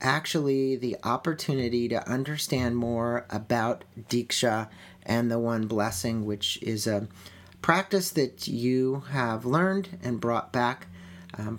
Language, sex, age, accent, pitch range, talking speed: English, male, 50-69, American, 110-135 Hz, 125 wpm